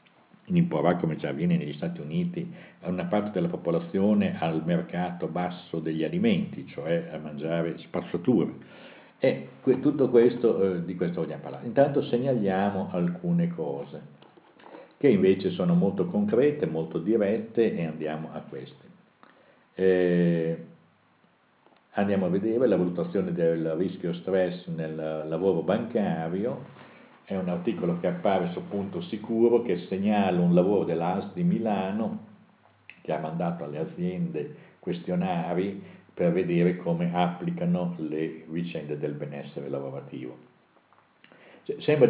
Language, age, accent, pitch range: Italian, 60-79, native, 80-120 Hz